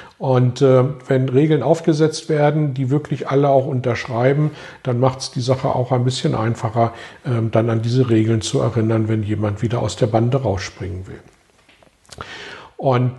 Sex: male